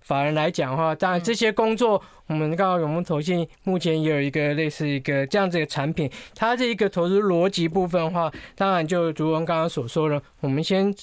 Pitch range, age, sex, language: 150-200 Hz, 20-39, male, Chinese